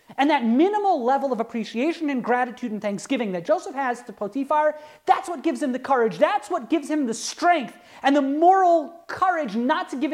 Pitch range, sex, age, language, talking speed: 230-315 Hz, male, 30-49, English, 200 wpm